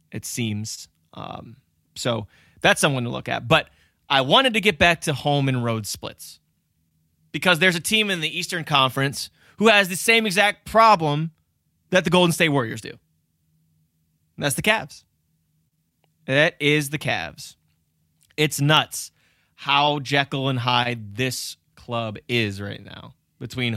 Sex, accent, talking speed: male, American, 150 wpm